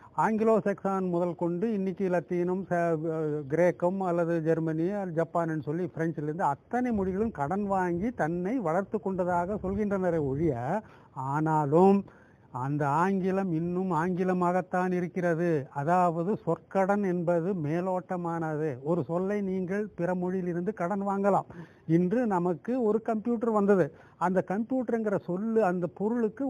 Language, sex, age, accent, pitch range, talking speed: English, male, 50-69, Indian, 165-200 Hz, 105 wpm